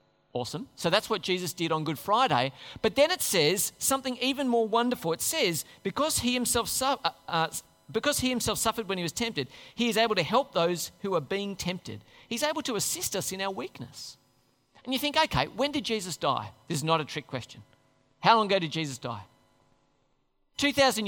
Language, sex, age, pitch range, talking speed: English, male, 40-59, 140-230 Hz, 190 wpm